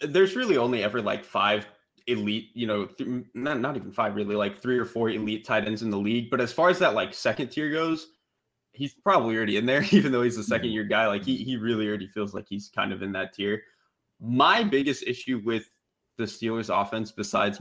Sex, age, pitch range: male, 20-39, 110-140 Hz